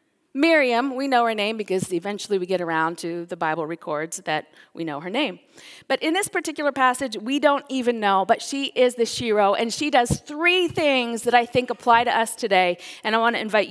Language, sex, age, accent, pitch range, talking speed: English, female, 40-59, American, 180-250 Hz, 220 wpm